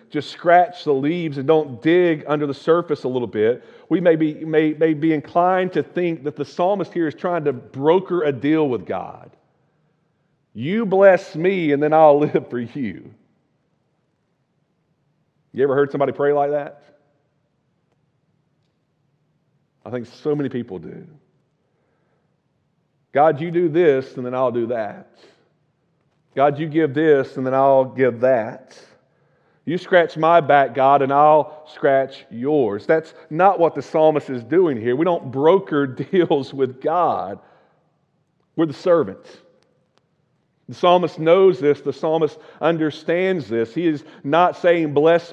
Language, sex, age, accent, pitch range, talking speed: English, male, 40-59, American, 145-170 Hz, 150 wpm